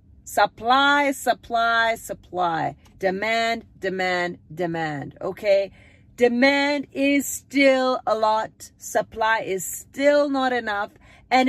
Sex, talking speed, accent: female, 95 wpm, American